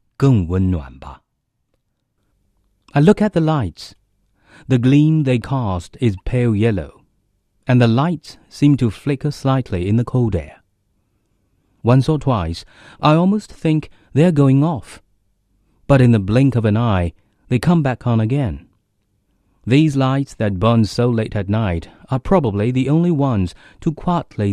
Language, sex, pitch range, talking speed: English, male, 100-140 Hz, 145 wpm